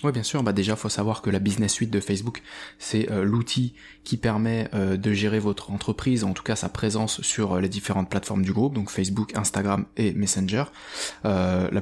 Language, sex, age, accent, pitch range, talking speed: French, male, 20-39, French, 100-115 Hz, 220 wpm